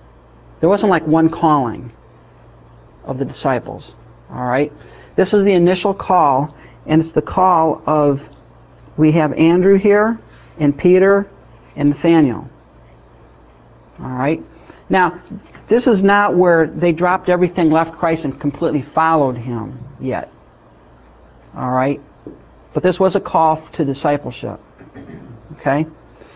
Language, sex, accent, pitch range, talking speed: English, male, American, 145-175 Hz, 125 wpm